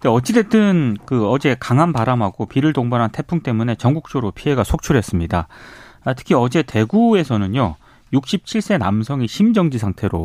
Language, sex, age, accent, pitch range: Korean, male, 30-49, native, 110-175 Hz